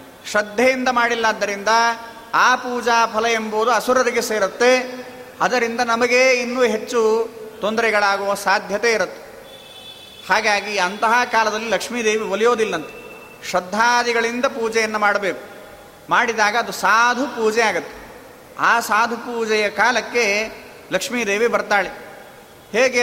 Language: Kannada